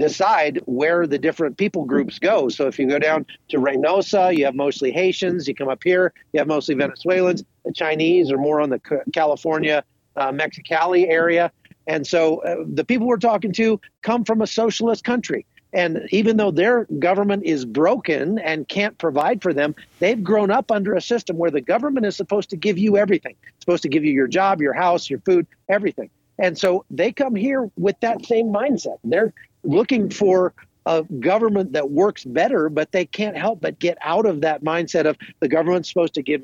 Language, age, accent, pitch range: English, 50-69, American, 155-200 Hz